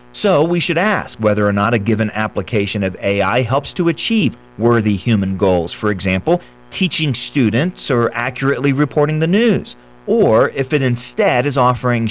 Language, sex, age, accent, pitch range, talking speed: English, male, 40-59, American, 105-150 Hz, 165 wpm